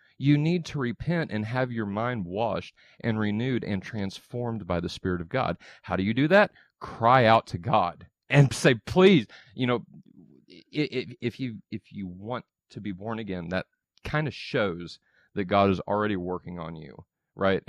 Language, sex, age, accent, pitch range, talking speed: English, male, 30-49, American, 95-120 Hz, 180 wpm